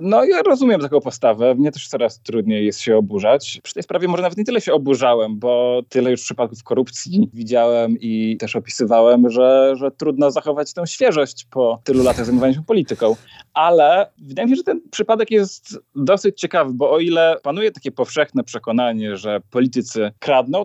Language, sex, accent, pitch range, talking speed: Polish, male, native, 120-150 Hz, 180 wpm